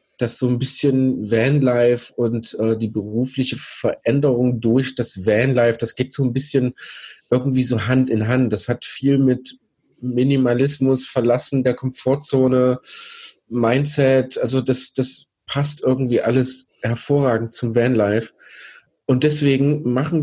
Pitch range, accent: 120-140 Hz, German